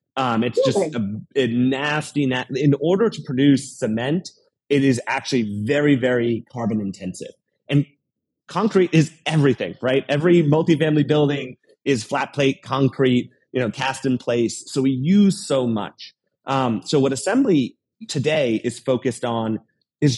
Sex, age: male, 30-49